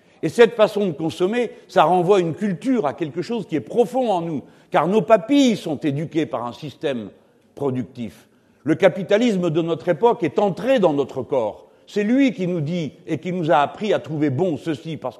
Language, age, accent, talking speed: French, 60-79, French, 200 wpm